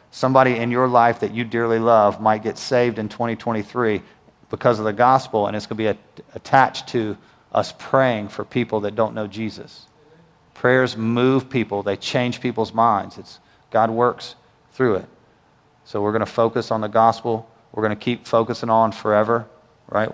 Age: 40-59